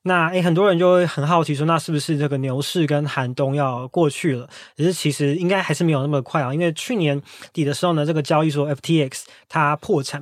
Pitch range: 145-175 Hz